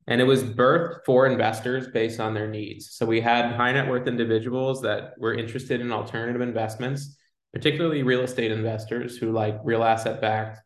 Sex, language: male, English